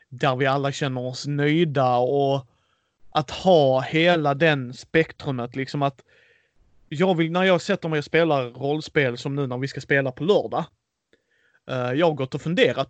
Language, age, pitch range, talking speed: Swedish, 30-49, 130-170 Hz, 170 wpm